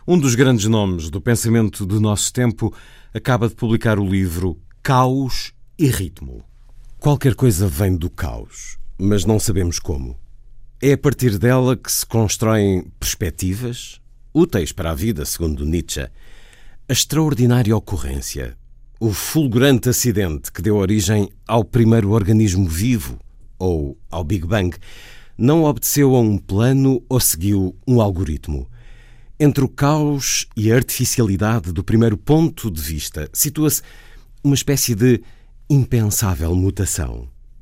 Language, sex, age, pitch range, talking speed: Portuguese, male, 50-69, 95-125 Hz, 130 wpm